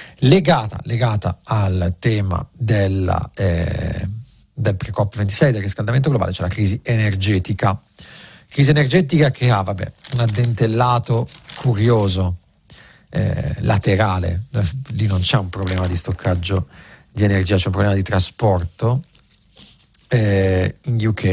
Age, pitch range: 40-59, 100-120 Hz